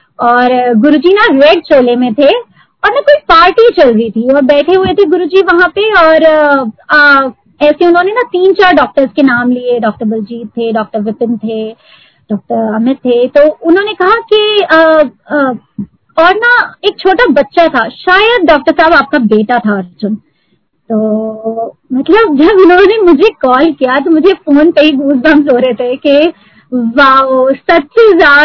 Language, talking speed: Hindi, 170 wpm